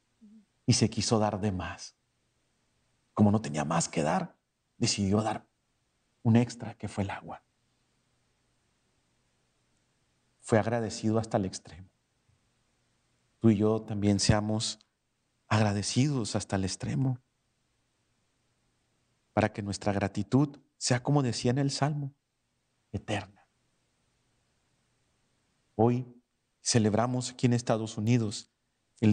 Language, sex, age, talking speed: Spanish, male, 40-59, 105 wpm